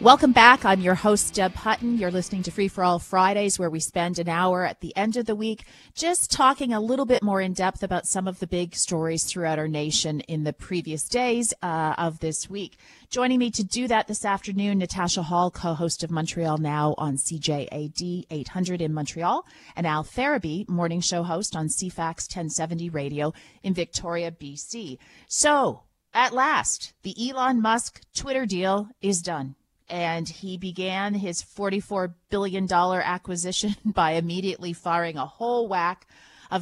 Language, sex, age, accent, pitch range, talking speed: English, female, 30-49, American, 165-210 Hz, 170 wpm